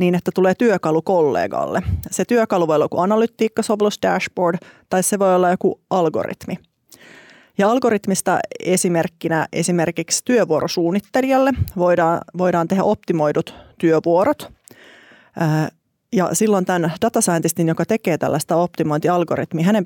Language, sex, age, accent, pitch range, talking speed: Finnish, female, 30-49, native, 165-220 Hz, 115 wpm